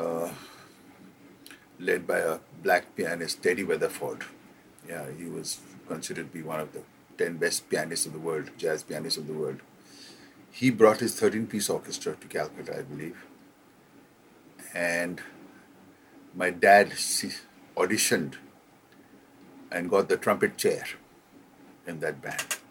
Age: 50-69